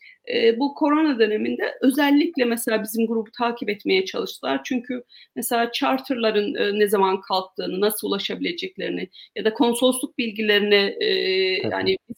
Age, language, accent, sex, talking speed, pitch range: 40-59, Turkish, native, female, 115 wpm, 190-250 Hz